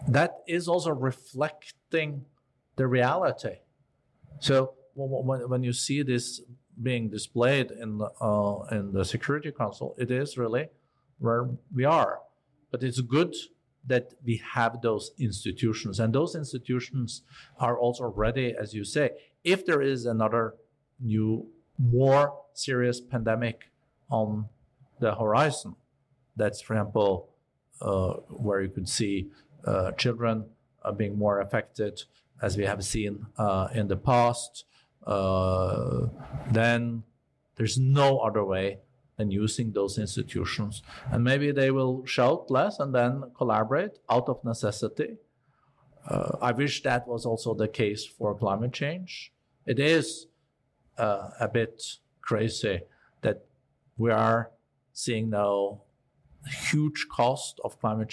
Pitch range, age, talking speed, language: 110-135 Hz, 50-69, 125 wpm, English